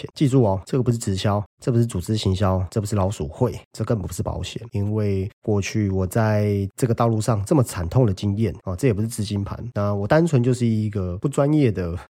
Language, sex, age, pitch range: Chinese, male, 30-49, 95-125 Hz